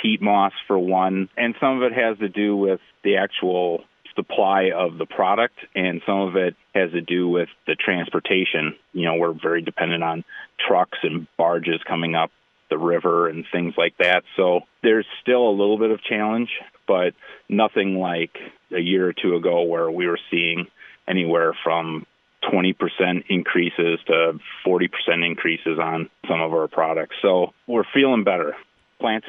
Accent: American